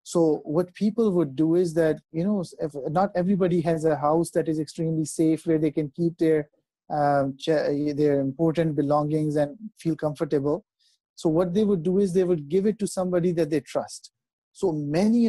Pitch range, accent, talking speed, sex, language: 155-190 Hz, Indian, 180 wpm, male, English